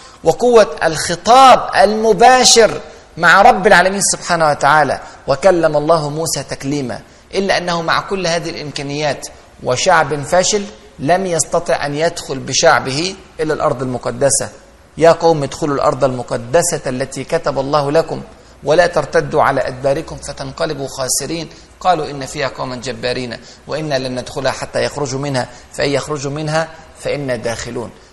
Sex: male